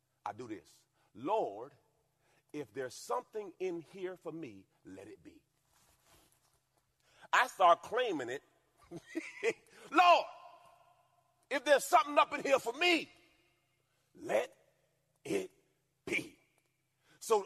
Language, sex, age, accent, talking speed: English, male, 40-59, American, 105 wpm